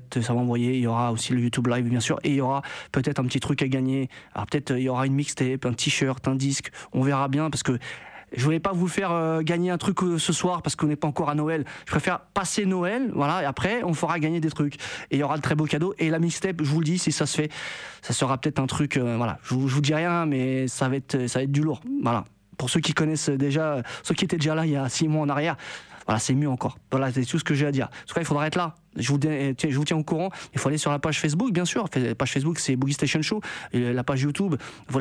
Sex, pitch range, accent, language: male, 130-155 Hz, French, Japanese